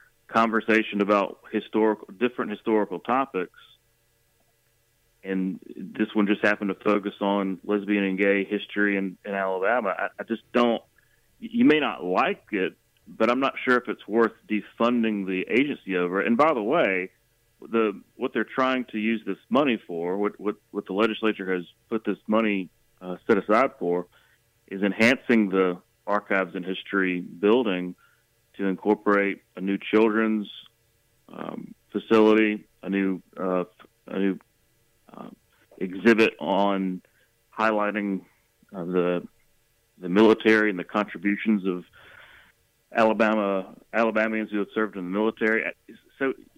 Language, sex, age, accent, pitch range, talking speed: English, male, 30-49, American, 95-115 Hz, 140 wpm